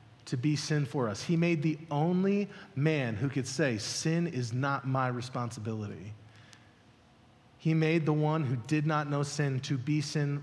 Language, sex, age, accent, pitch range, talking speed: English, male, 30-49, American, 130-185 Hz, 175 wpm